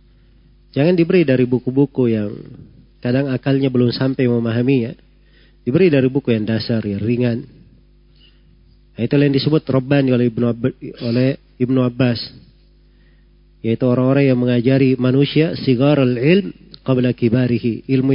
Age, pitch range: 40-59, 120-150 Hz